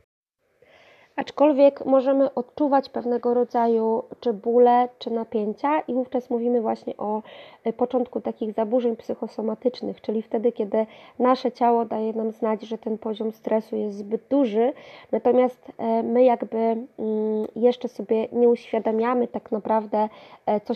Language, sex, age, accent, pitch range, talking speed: Polish, female, 20-39, native, 225-255 Hz, 125 wpm